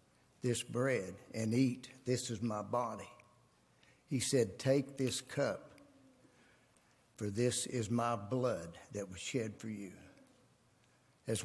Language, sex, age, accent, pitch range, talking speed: English, male, 60-79, American, 105-125 Hz, 125 wpm